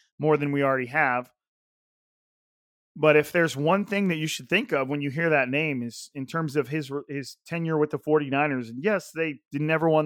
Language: English